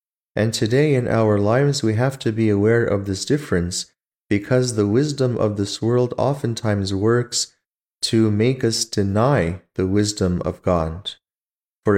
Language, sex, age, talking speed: English, male, 30-49, 150 wpm